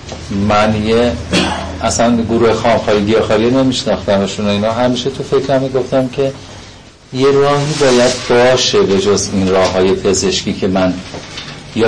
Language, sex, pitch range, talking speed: Persian, male, 95-115 Hz, 135 wpm